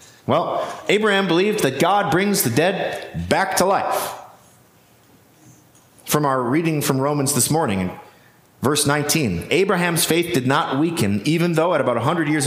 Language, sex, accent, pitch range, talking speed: English, male, American, 120-165 Hz, 150 wpm